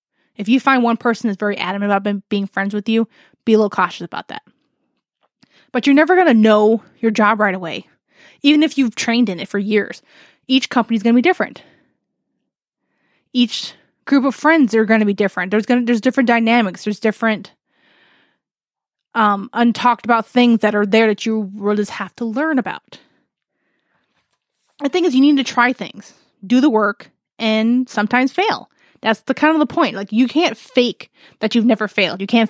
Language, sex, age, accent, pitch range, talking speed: English, female, 20-39, American, 205-250 Hz, 195 wpm